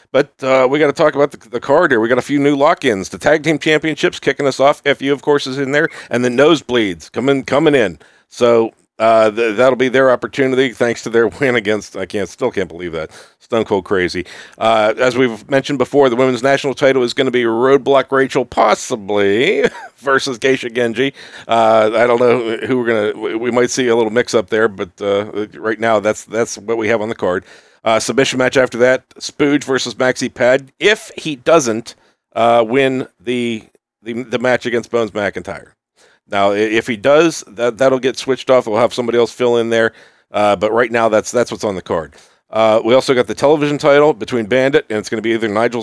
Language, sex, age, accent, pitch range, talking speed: English, male, 50-69, American, 115-135 Hz, 220 wpm